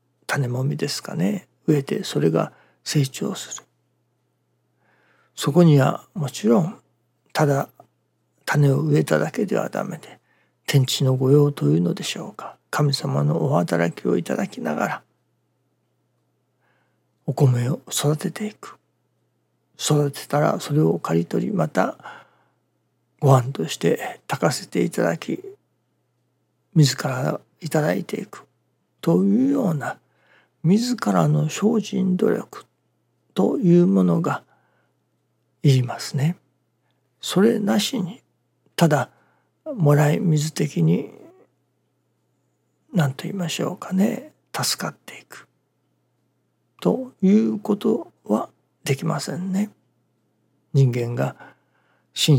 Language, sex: Japanese, male